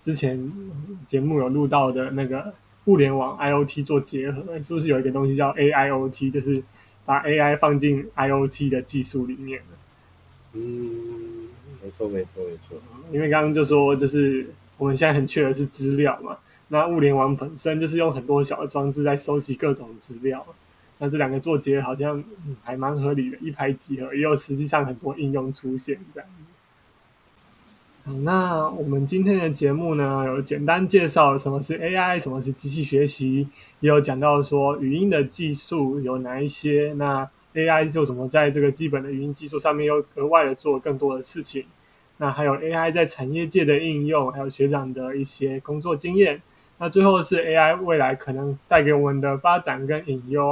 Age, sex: 20-39, male